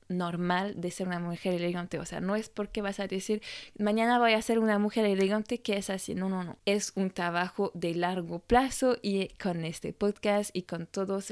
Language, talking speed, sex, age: Spanish, 210 wpm, female, 20-39